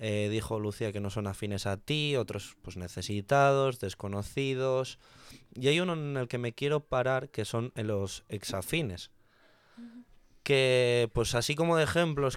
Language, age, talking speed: Spanish, 20-39, 155 wpm